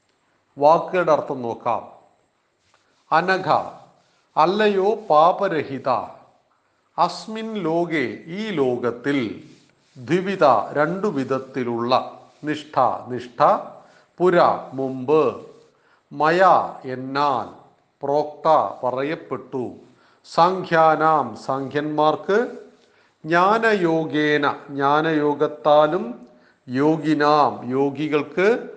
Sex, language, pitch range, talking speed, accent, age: male, Malayalam, 140-185 Hz, 50 wpm, native, 40-59